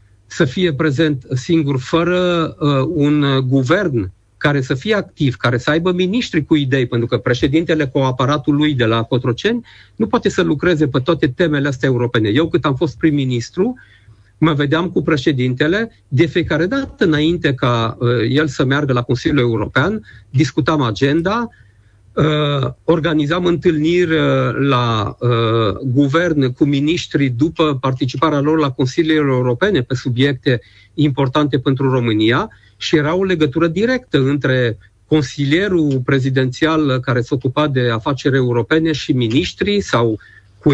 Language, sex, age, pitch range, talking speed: Romanian, male, 50-69, 125-165 Hz, 145 wpm